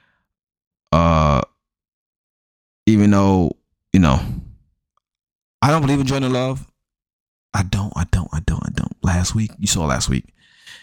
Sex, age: male, 20-39